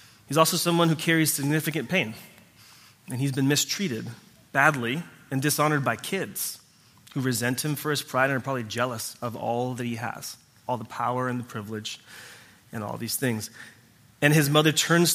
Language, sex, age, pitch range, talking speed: English, male, 30-49, 115-145 Hz, 180 wpm